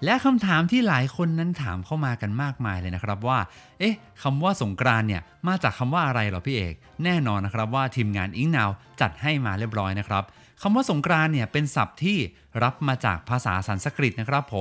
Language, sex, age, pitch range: Thai, male, 30-49, 105-160 Hz